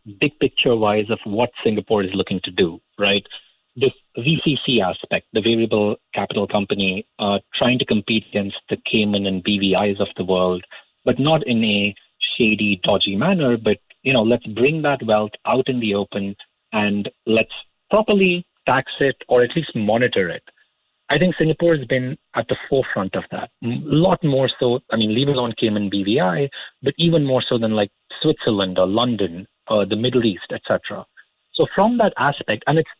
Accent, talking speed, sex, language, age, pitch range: Indian, 175 wpm, male, English, 30-49, 105-135 Hz